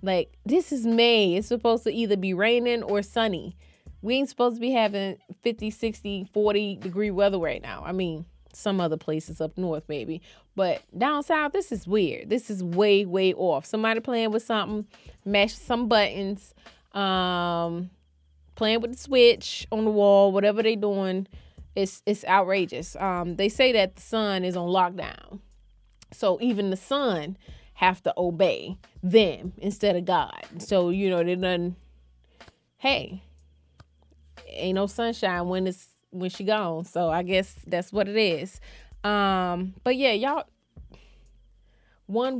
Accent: American